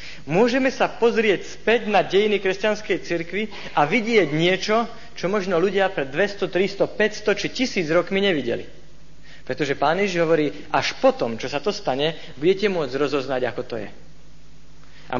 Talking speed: 155 wpm